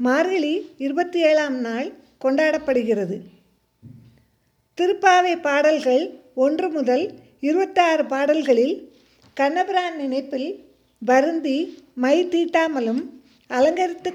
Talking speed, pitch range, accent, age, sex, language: 70 wpm, 260-325 Hz, native, 50-69, female, Tamil